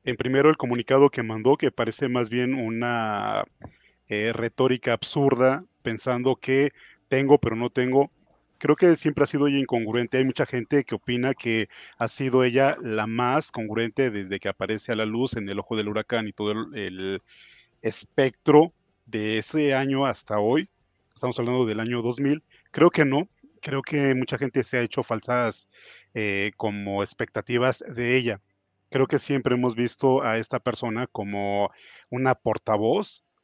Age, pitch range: 30-49, 110-135 Hz